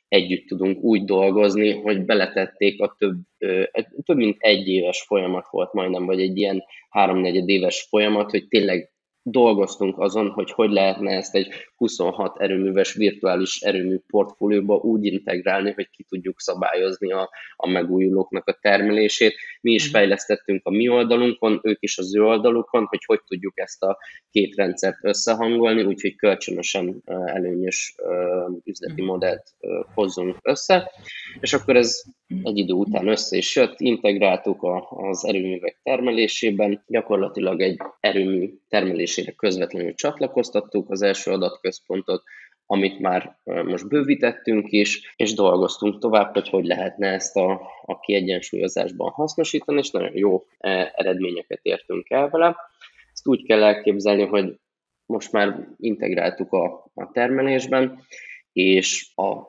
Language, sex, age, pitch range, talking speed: Hungarian, male, 20-39, 95-115 Hz, 130 wpm